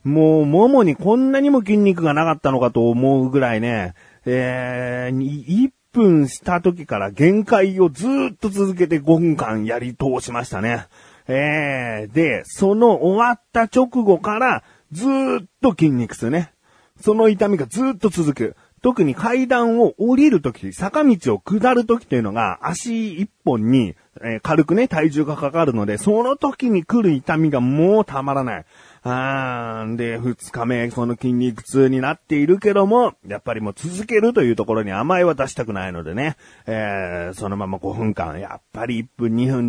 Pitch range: 115-195 Hz